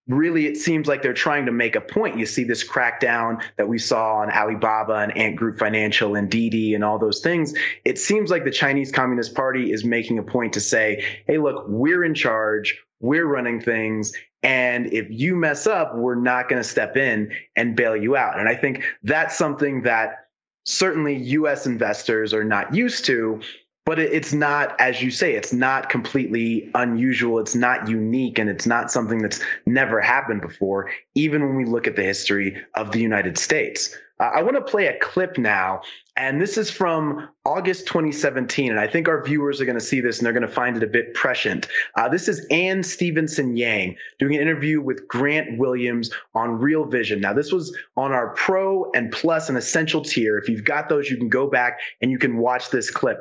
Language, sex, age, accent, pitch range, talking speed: English, male, 20-39, American, 115-155 Hz, 205 wpm